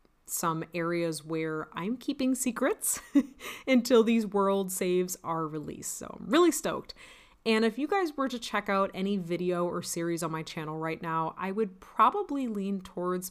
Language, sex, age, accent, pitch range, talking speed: English, female, 30-49, American, 170-225 Hz, 170 wpm